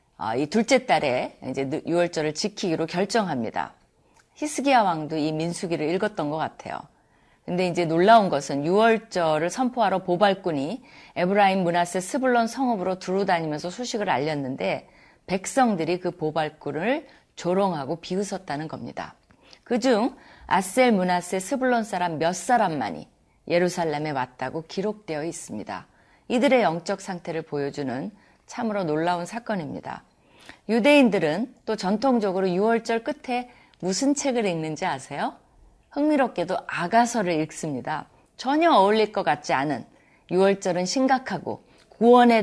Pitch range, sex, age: 160-230 Hz, female, 40-59